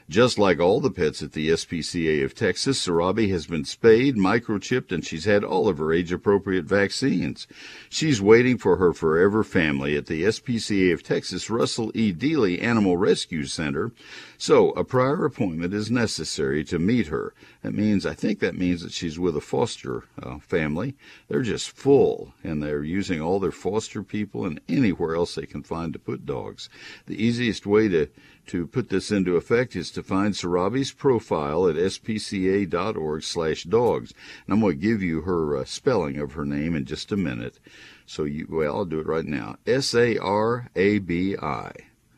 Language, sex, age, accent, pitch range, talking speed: English, male, 60-79, American, 85-110 Hz, 175 wpm